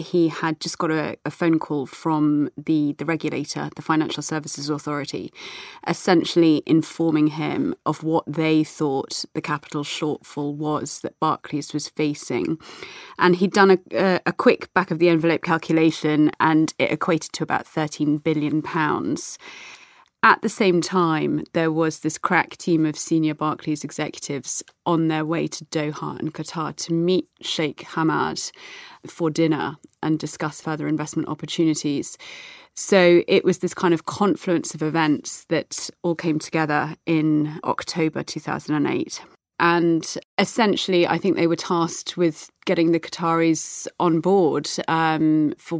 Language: English